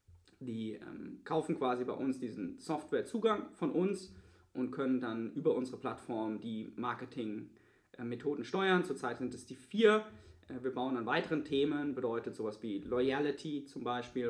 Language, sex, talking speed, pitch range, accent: German, male, 145 wpm, 115-145 Hz, German